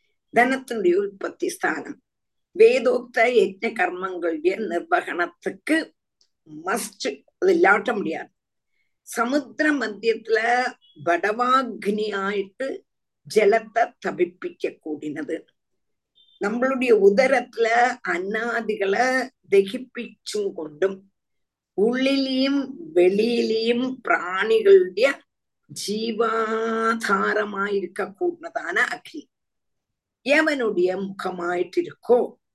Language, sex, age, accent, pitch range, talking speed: Tamil, female, 50-69, native, 180-290 Hz, 50 wpm